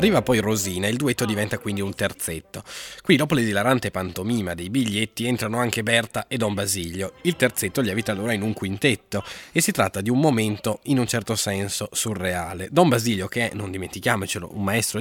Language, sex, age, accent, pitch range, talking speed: Italian, male, 20-39, native, 95-125 Hz, 190 wpm